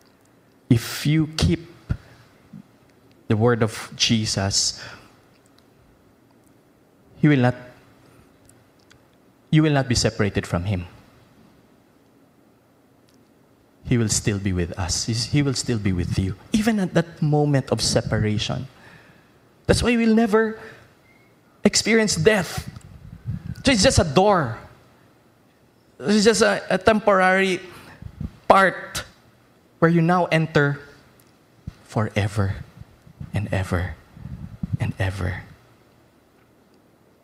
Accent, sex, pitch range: Filipino, male, 105-145 Hz